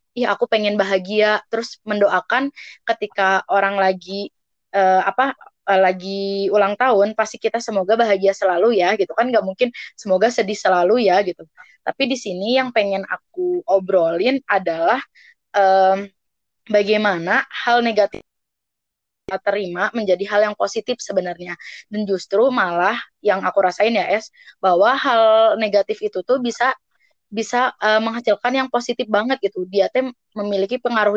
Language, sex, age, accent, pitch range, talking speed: Indonesian, female, 20-39, native, 190-235 Hz, 140 wpm